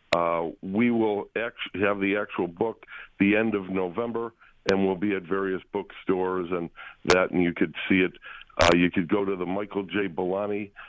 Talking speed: 185 wpm